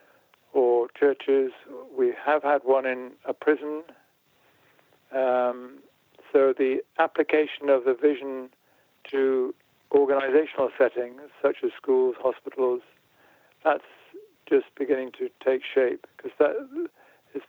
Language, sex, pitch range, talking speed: English, male, 130-195 Hz, 105 wpm